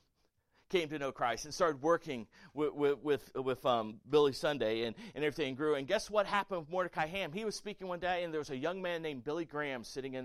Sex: male